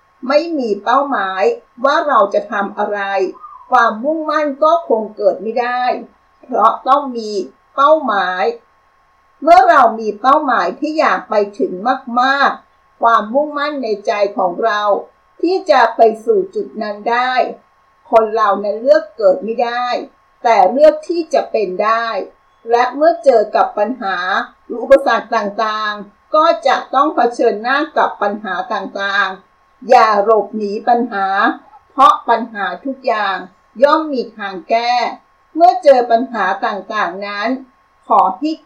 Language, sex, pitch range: Thai, female, 210-290 Hz